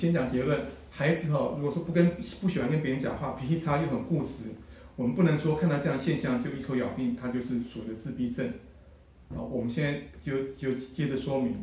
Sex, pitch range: male, 125-155 Hz